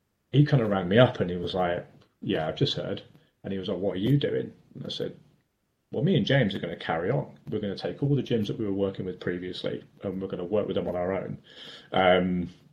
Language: English